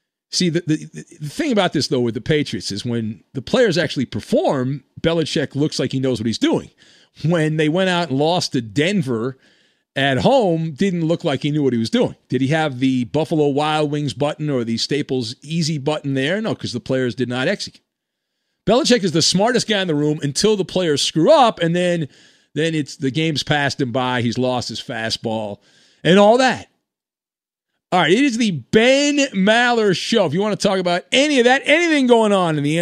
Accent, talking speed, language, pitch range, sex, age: American, 210 wpm, English, 135-180 Hz, male, 40-59